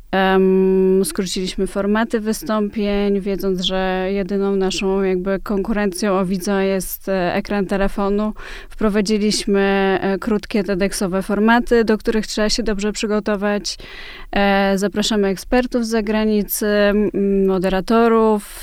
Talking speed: 95 wpm